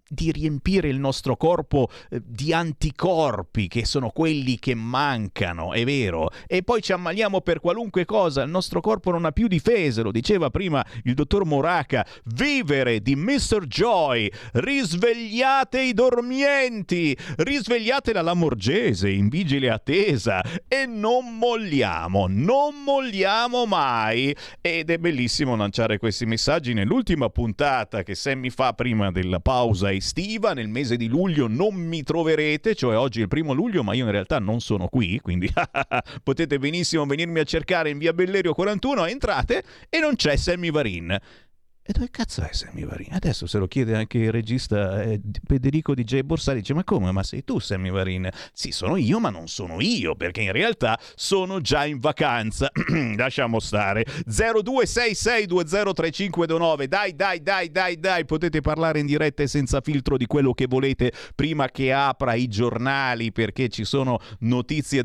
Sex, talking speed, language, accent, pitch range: male, 160 wpm, Italian, native, 120-180 Hz